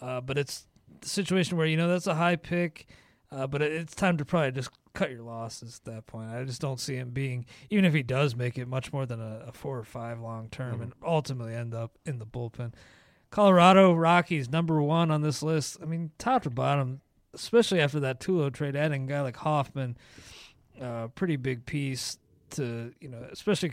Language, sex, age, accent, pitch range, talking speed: English, male, 30-49, American, 130-165 Hz, 215 wpm